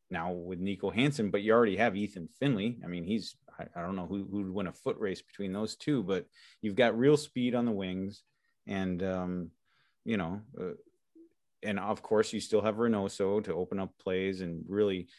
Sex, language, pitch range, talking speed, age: male, English, 90-115 Hz, 205 wpm, 30-49